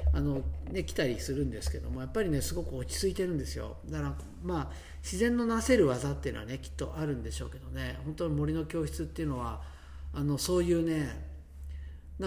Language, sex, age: Japanese, male, 50-69